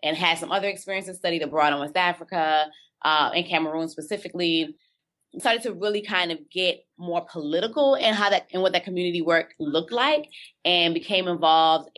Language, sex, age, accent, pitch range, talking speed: English, female, 20-39, American, 155-175 Hz, 175 wpm